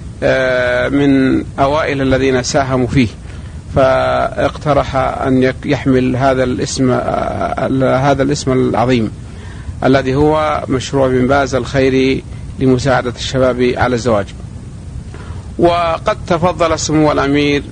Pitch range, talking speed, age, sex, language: 125-140 Hz, 90 wpm, 50-69, male, Arabic